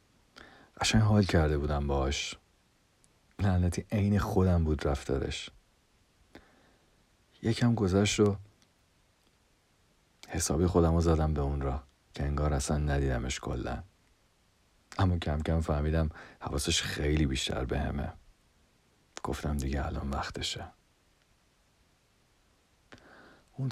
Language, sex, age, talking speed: Persian, male, 50-69, 100 wpm